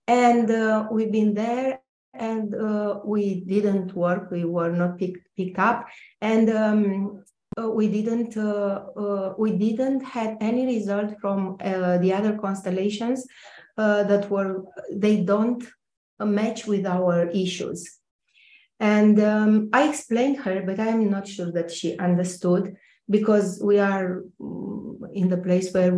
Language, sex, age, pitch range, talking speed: English, female, 30-49, 185-220 Hz, 145 wpm